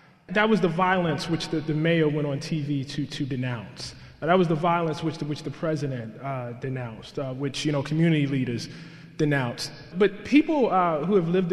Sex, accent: male, American